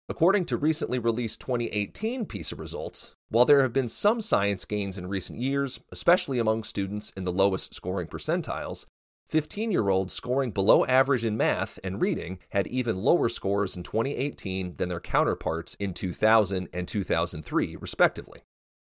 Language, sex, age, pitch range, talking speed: English, male, 30-49, 90-125 Hz, 150 wpm